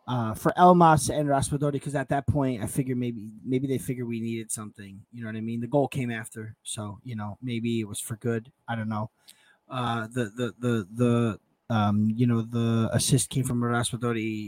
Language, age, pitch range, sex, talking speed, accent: English, 20-39, 115-135 Hz, male, 210 wpm, American